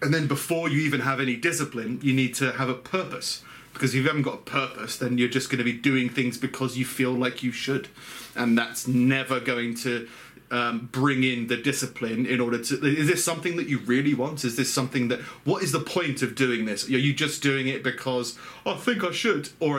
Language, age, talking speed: English, 30-49, 235 wpm